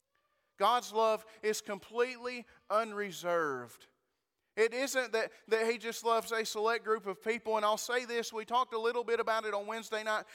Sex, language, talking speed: male, English, 180 wpm